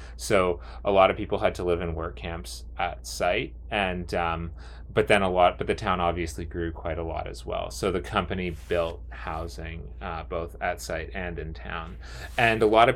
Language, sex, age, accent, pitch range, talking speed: English, male, 30-49, American, 80-90 Hz, 210 wpm